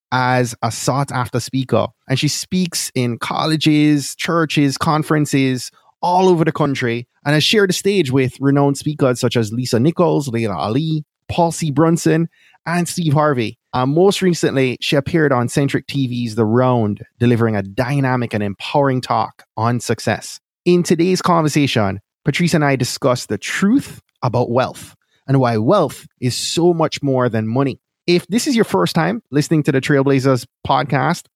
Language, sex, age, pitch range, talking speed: English, male, 20-39, 120-155 Hz, 160 wpm